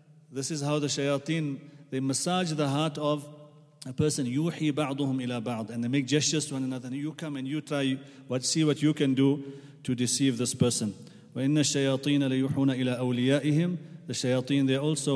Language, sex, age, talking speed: English, male, 40-59, 155 wpm